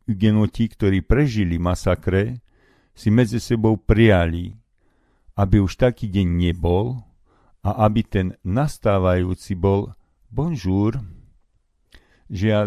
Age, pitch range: 50-69, 85-115 Hz